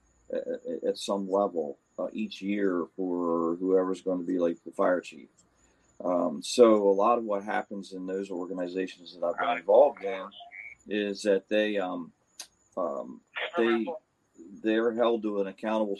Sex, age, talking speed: male, 40-59, 155 wpm